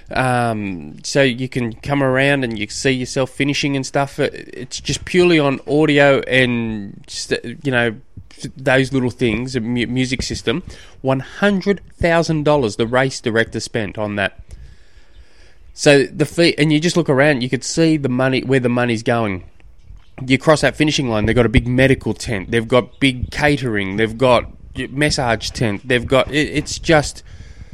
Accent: Australian